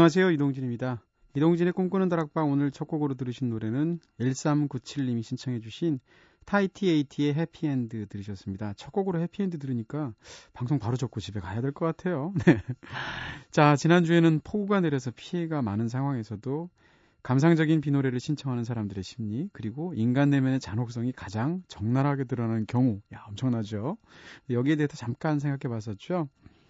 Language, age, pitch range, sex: Korean, 30-49, 115-155 Hz, male